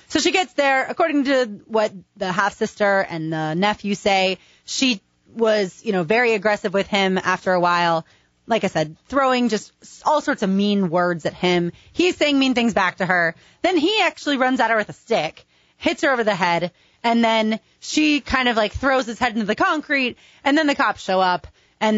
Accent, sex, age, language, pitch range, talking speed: American, female, 30-49, English, 190-265 Hz, 210 wpm